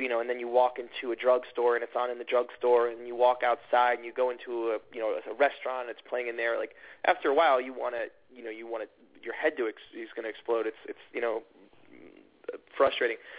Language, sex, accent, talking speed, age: English, male, American, 260 wpm, 20-39